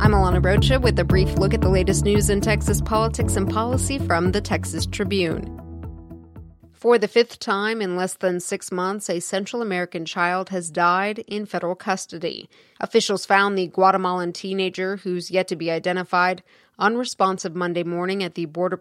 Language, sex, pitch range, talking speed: English, female, 170-195 Hz, 170 wpm